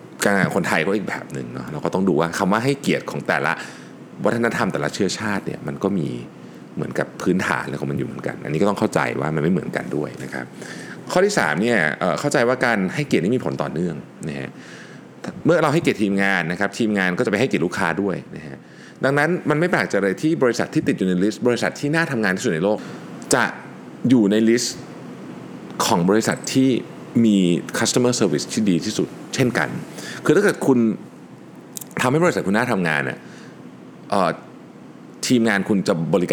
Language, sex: Thai, male